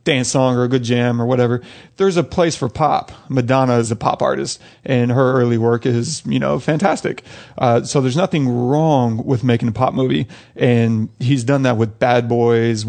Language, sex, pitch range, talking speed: English, male, 120-140 Hz, 200 wpm